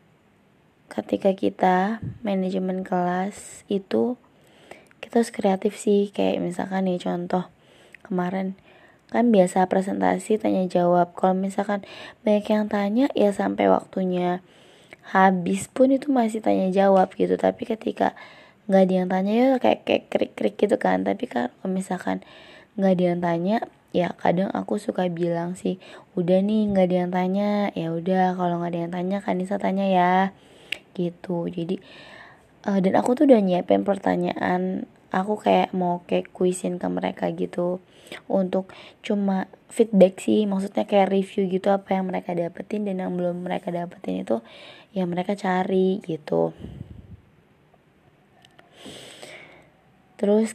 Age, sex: 20-39, female